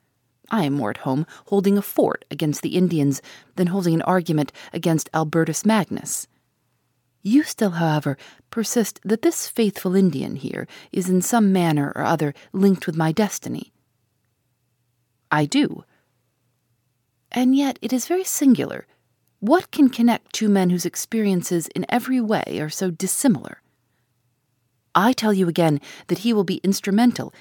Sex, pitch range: female, 125-210 Hz